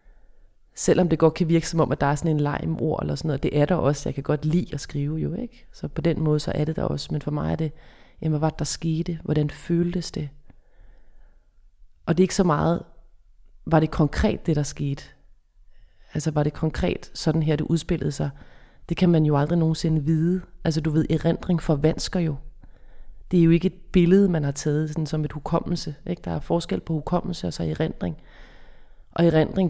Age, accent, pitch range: 30-49, native, 150-170 Hz